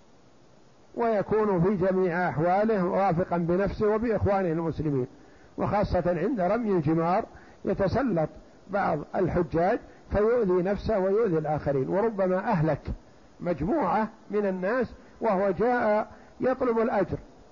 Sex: male